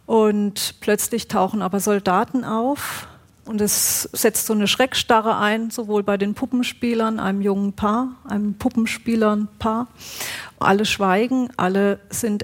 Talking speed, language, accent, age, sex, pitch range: 125 wpm, German, German, 40-59, female, 200-235 Hz